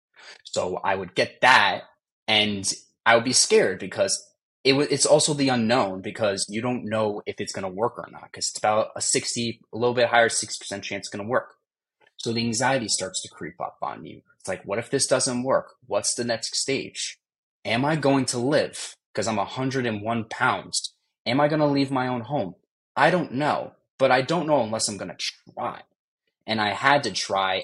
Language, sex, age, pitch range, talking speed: English, male, 20-39, 100-125 Hz, 205 wpm